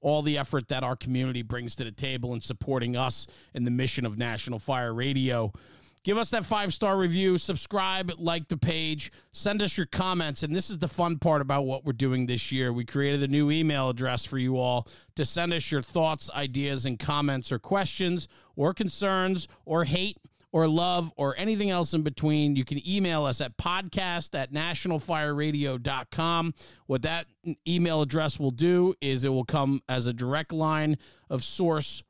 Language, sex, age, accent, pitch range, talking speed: English, male, 40-59, American, 135-170 Hz, 185 wpm